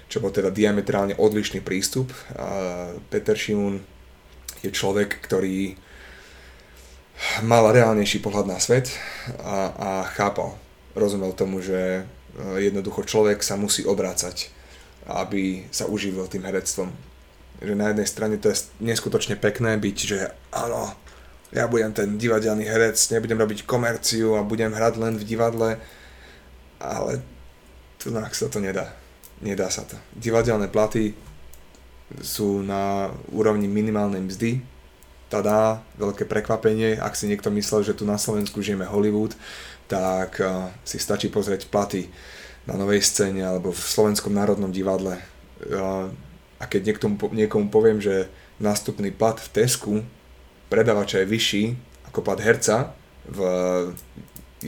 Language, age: Slovak, 20-39